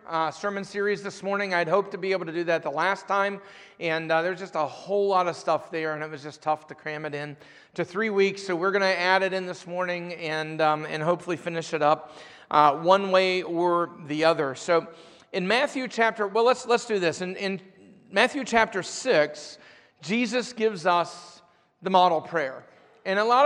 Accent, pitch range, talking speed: American, 170-205 Hz, 210 wpm